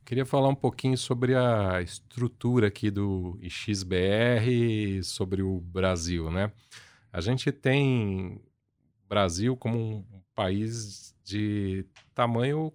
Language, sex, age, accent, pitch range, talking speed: Portuguese, male, 40-59, Brazilian, 100-130 Hz, 115 wpm